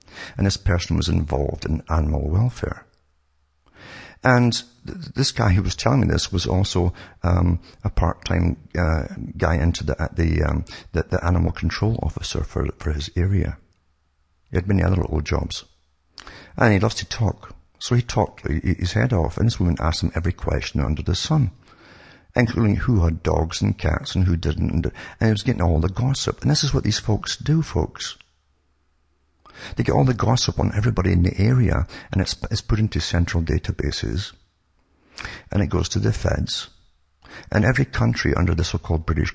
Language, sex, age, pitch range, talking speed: English, male, 60-79, 80-105 Hz, 180 wpm